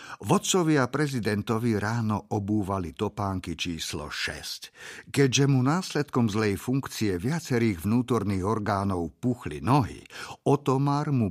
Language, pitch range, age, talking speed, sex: Slovak, 95-130 Hz, 50-69, 105 wpm, male